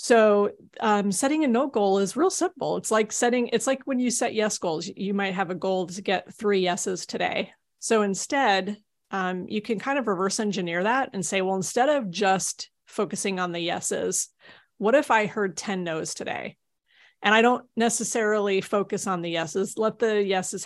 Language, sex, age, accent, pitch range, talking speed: English, female, 30-49, American, 180-220 Hz, 195 wpm